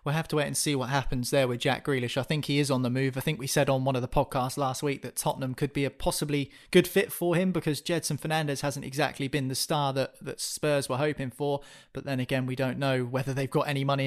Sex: male